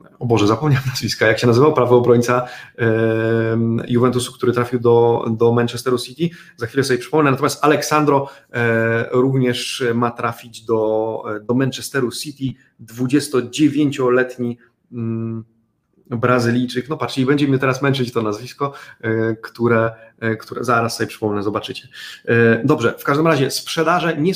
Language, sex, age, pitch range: Polish, male, 30-49, 120-145 Hz